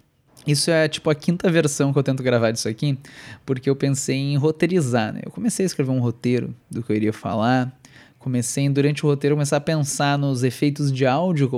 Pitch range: 135-175 Hz